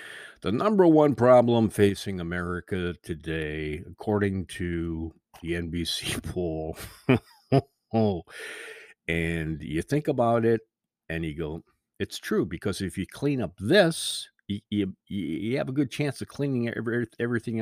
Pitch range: 80-115 Hz